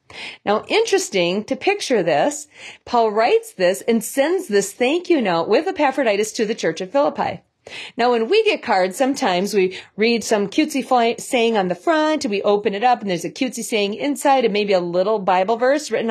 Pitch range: 205-290 Hz